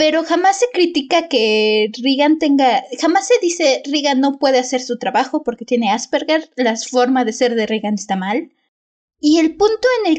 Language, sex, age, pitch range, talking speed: Spanish, female, 20-39, 235-295 Hz, 195 wpm